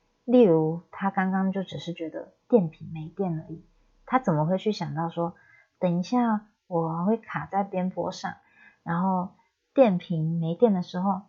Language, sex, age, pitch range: Chinese, female, 30-49, 165-205 Hz